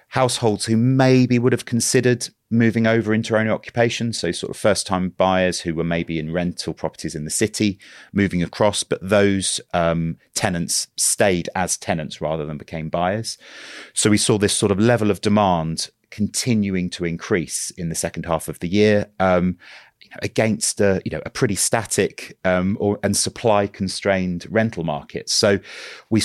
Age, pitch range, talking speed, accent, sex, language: 30-49, 90-110 Hz, 165 wpm, British, male, English